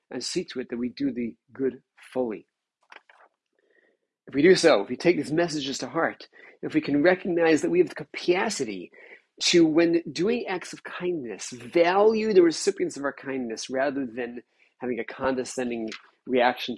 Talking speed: 170 wpm